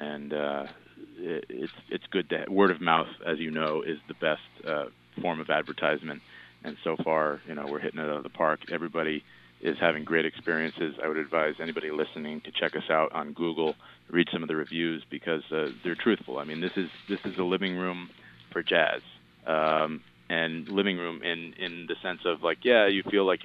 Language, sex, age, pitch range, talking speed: English, male, 30-49, 80-95 Hz, 210 wpm